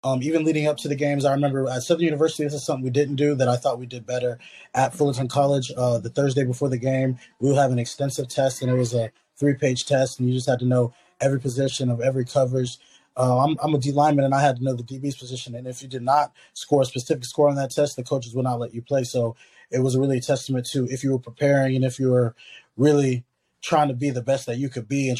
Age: 20-39